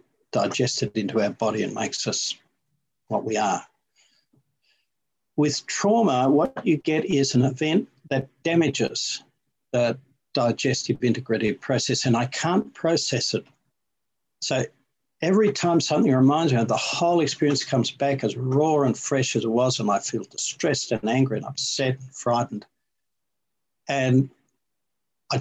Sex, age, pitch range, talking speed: male, 60-79, 115-140 Hz, 140 wpm